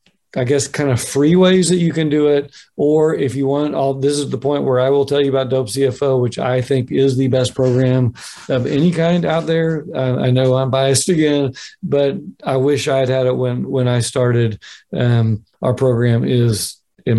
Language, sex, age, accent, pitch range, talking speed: English, male, 50-69, American, 125-140 Hz, 215 wpm